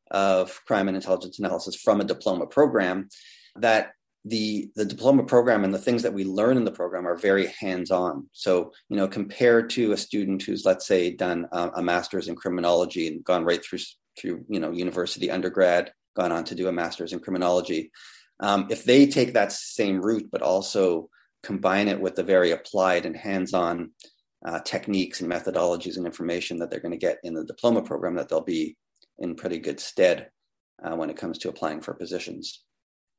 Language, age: English, 30-49